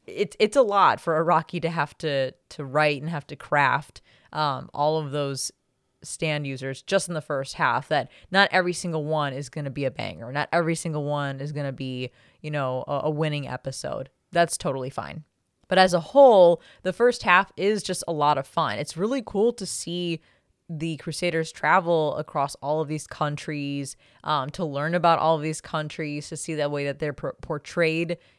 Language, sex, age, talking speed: English, female, 20-39, 195 wpm